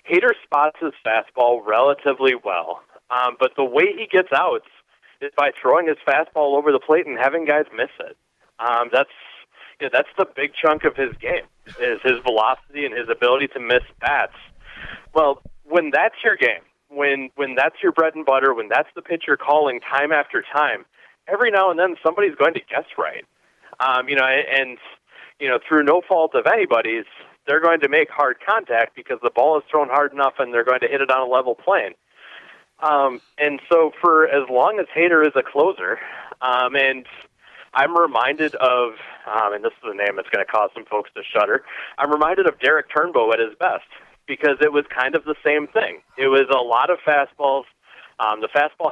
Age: 30-49